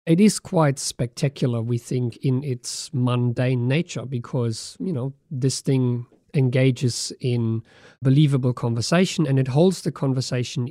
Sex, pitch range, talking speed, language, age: male, 125-145 Hz, 135 wpm, English, 50-69